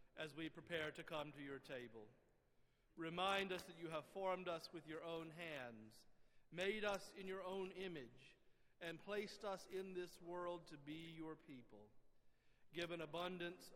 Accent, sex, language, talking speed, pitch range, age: American, male, English, 160 wpm, 140-175 Hz, 50-69